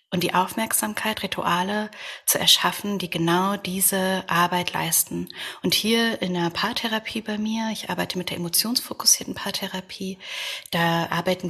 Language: English